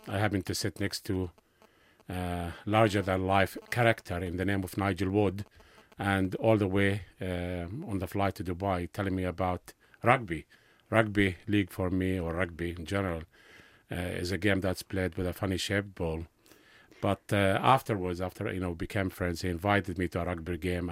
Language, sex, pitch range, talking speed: English, male, 90-105 Hz, 185 wpm